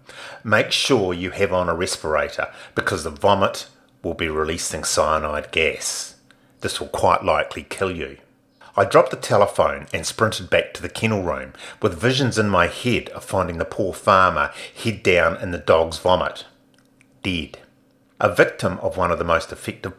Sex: male